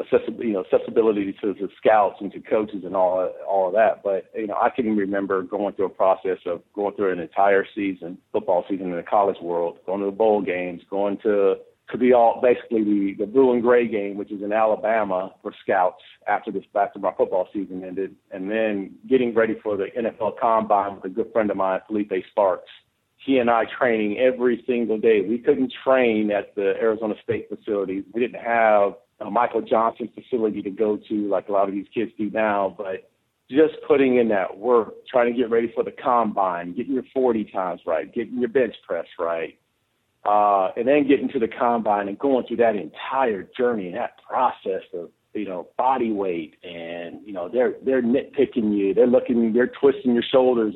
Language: English